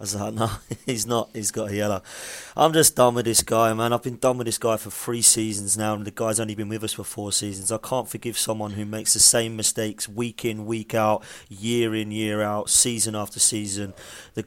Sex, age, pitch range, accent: male, 30-49, 105-115 Hz, British